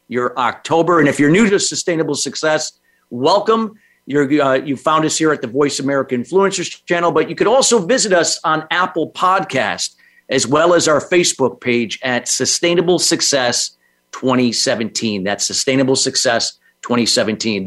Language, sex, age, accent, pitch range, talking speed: English, male, 50-69, American, 130-165 Hz, 150 wpm